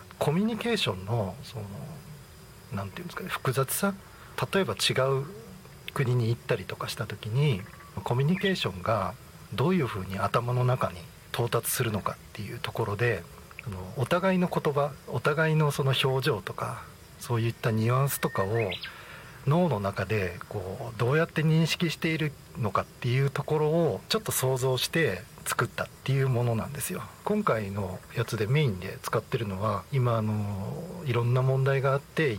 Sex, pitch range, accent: male, 110-150 Hz, native